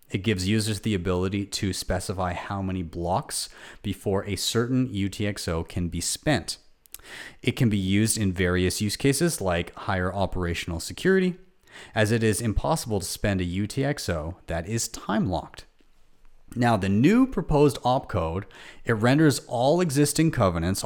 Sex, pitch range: male, 95-125 Hz